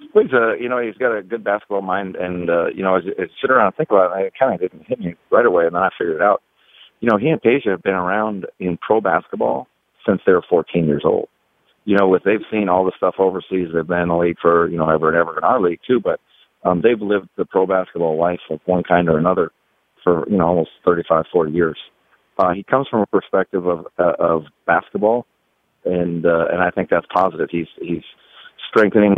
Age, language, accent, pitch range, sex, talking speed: 40-59, English, American, 85-100 Hz, male, 240 wpm